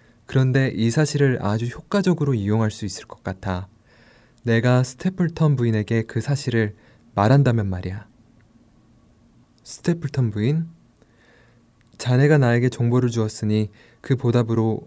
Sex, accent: male, native